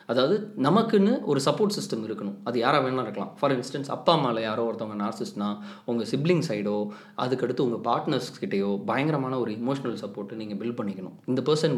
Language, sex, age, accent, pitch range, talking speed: Tamil, male, 20-39, native, 110-150 Hz, 165 wpm